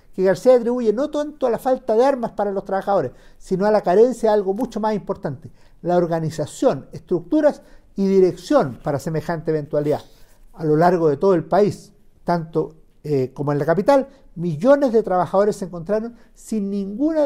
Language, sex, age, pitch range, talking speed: Spanish, male, 50-69, 155-230 Hz, 175 wpm